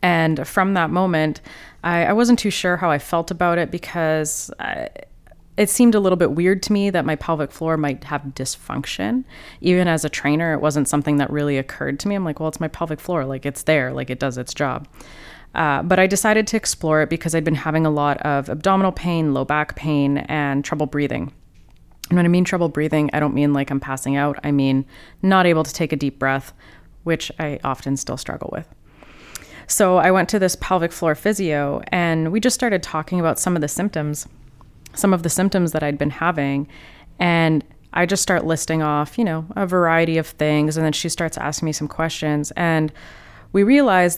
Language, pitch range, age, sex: English, 145-175 Hz, 20-39, female